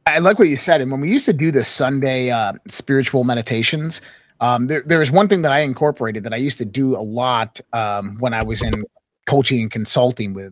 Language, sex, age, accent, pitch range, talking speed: English, male, 30-49, American, 120-165 Hz, 235 wpm